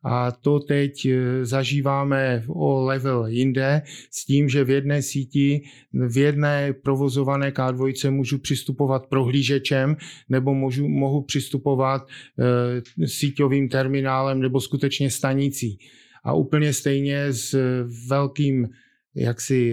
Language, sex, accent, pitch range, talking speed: Czech, male, native, 130-140 Hz, 110 wpm